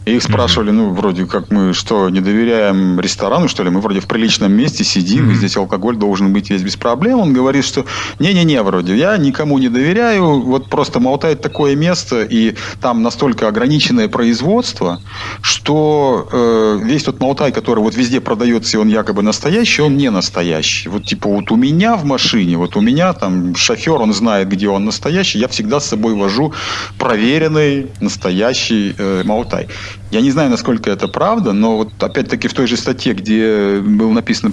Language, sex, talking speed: Russian, male, 175 wpm